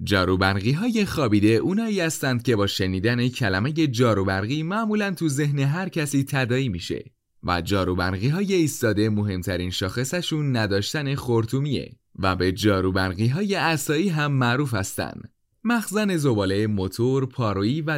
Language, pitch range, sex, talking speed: Persian, 105-155 Hz, male, 120 wpm